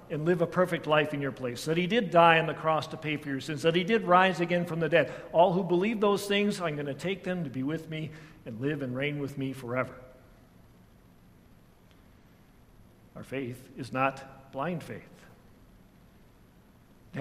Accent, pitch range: American, 135-165 Hz